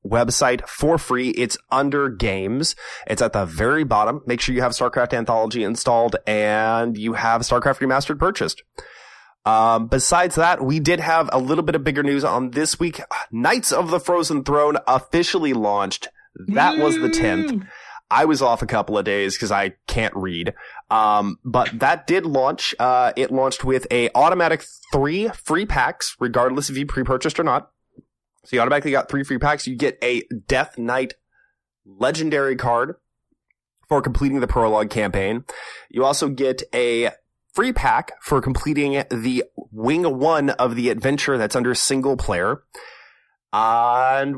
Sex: male